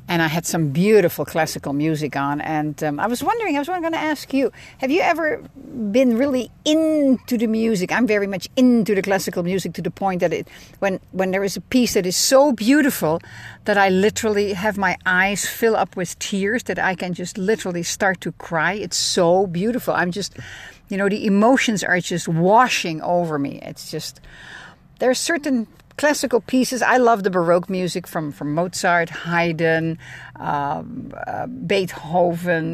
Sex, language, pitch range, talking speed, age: female, English, 170-225 Hz, 185 wpm, 60-79